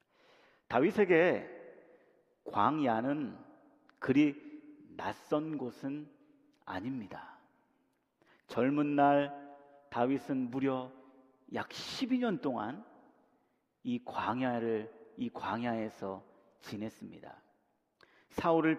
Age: 40-59